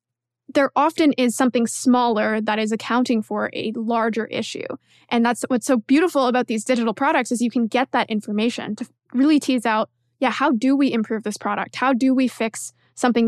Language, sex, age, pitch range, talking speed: English, female, 20-39, 225-270 Hz, 195 wpm